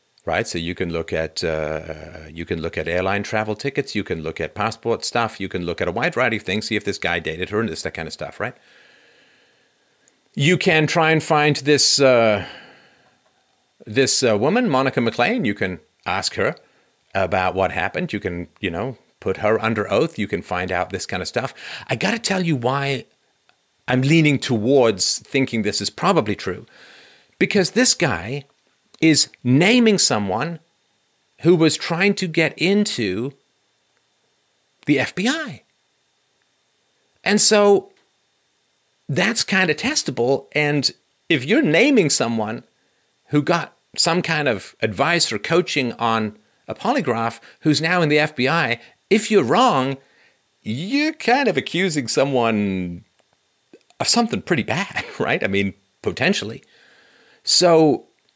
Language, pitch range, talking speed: English, 105-170 Hz, 155 wpm